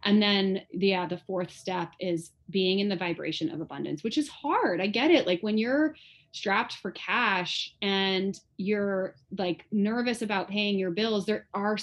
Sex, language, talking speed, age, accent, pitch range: female, English, 185 wpm, 20-39, American, 185-220 Hz